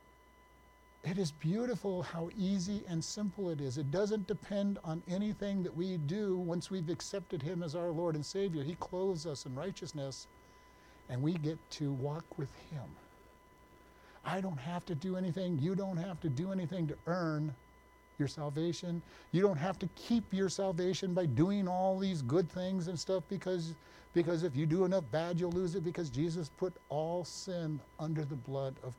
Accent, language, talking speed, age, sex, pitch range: American, English, 180 wpm, 50-69, male, 140-185 Hz